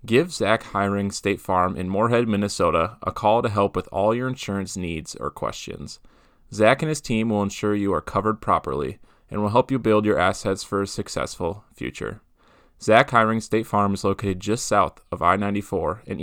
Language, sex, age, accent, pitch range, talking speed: English, male, 20-39, American, 95-110 Hz, 190 wpm